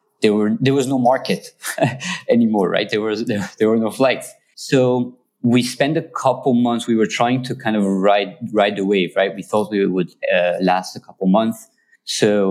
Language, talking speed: English, 200 wpm